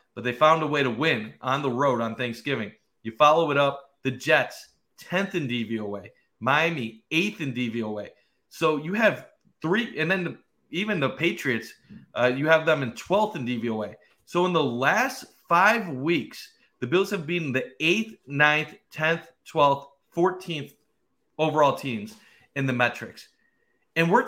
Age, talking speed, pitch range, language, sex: 30-49, 160 wpm, 135-195 Hz, English, male